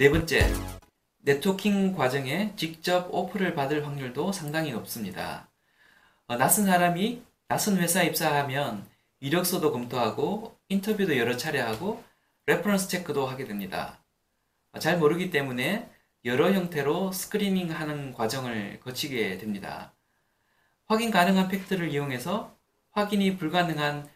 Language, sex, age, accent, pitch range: Korean, male, 20-39, native, 135-190 Hz